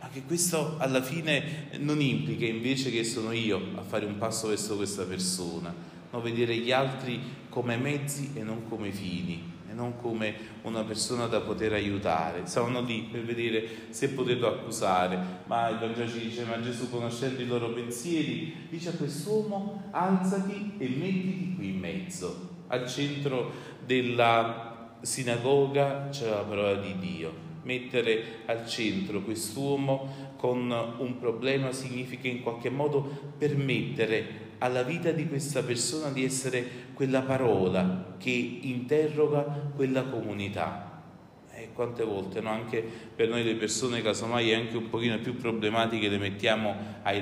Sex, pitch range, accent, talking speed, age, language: male, 105-140 Hz, native, 145 wpm, 30-49, Italian